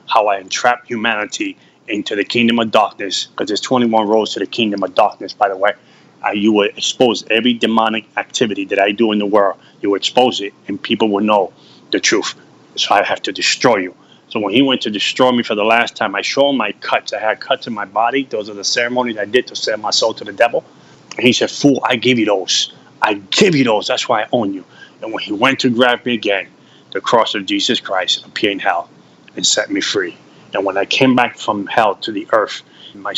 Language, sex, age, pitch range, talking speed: English, male, 30-49, 105-125 Hz, 240 wpm